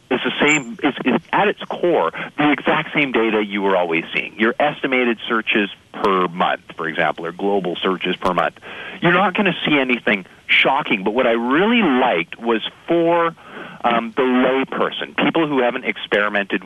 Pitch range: 100-150 Hz